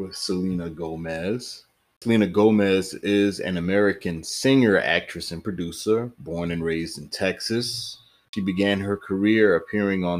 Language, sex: English, male